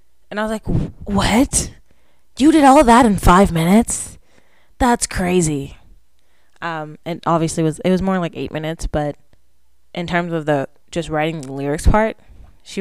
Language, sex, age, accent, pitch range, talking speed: English, female, 10-29, American, 150-185 Hz, 175 wpm